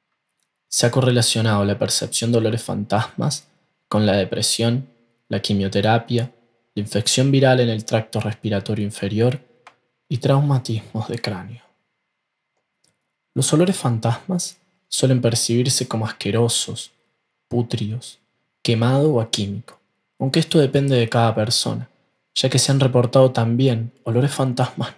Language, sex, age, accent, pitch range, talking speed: Spanish, male, 20-39, Argentinian, 115-135 Hz, 120 wpm